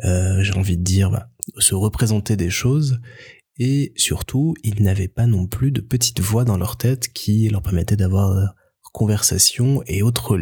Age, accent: 20-39, French